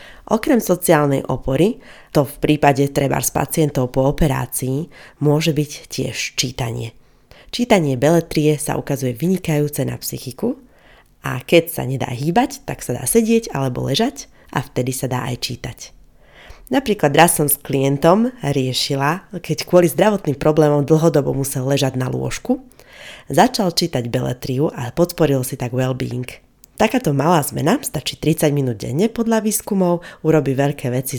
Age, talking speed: 30-49, 140 wpm